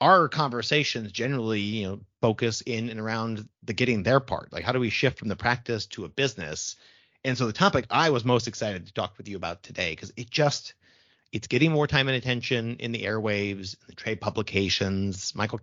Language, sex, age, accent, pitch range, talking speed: English, male, 30-49, American, 100-130 Hz, 200 wpm